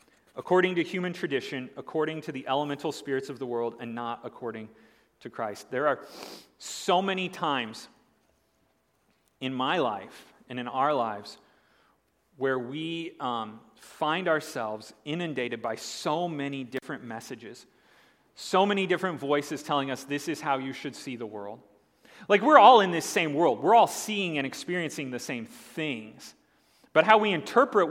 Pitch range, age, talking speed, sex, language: 140-215 Hz, 40-59, 155 wpm, male, English